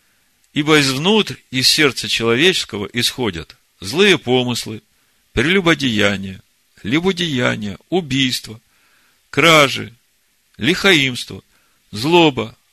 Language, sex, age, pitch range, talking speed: Russian, male, 50-69, 105-145 Hz, 65 wpm